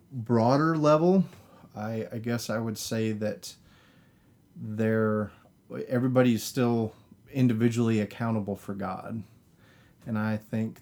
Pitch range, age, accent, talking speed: 105-120 Hz, 30-49, American, 110 wpm